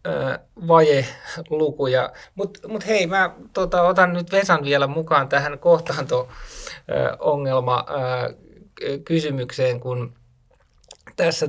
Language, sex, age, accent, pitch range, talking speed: Finnish, male, 20-39, native, 135-170 Hz, 80 wpm